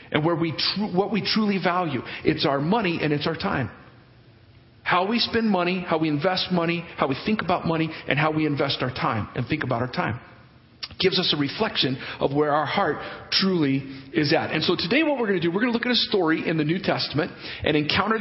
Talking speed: 235 wpm